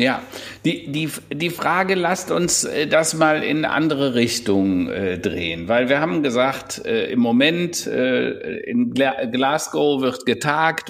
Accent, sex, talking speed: German, male, 145 wpm